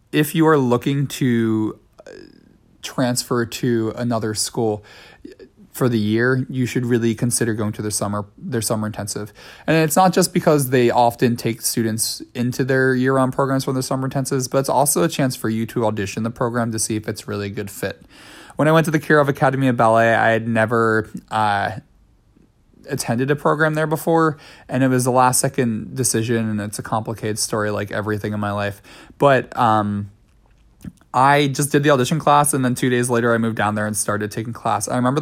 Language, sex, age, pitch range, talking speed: English, male, 20-39, 110-135 Hz, 200 wpm